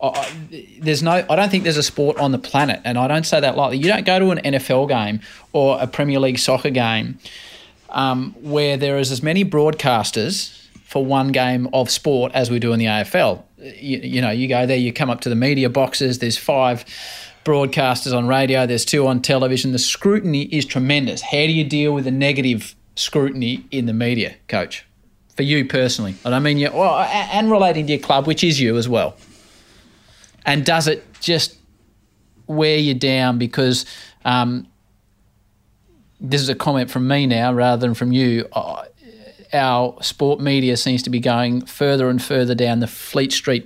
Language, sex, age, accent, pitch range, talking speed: English, male, 30-49, Australian, 120-145 Hz, 190 wpm